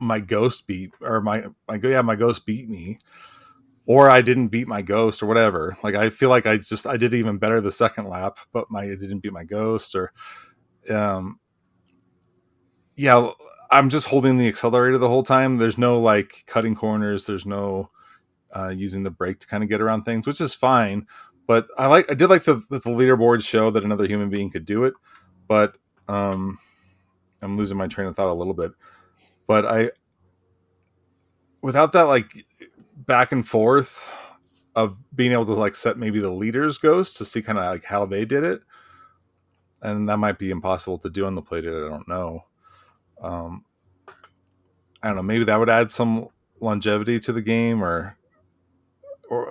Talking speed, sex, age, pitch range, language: 185 wpm, male, 30-49, 95-120 Hz, English